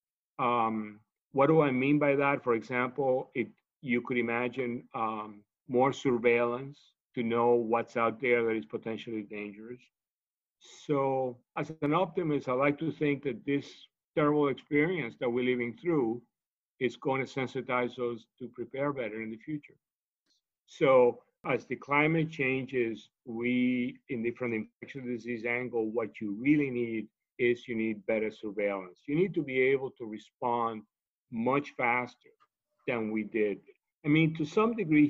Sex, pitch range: male, 120-145 Hz